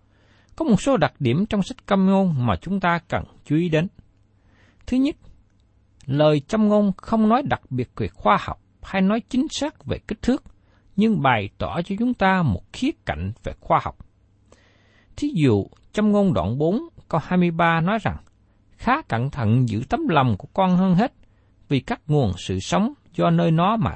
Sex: male